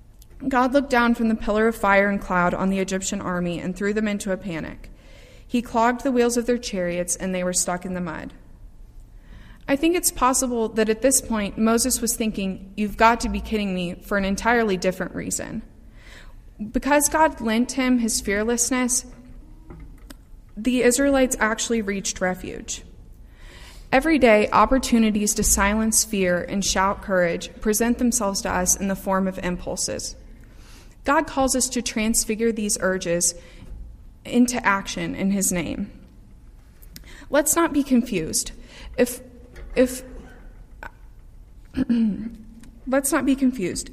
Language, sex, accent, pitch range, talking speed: English, female, American, 195-250 Hz, 145 wpm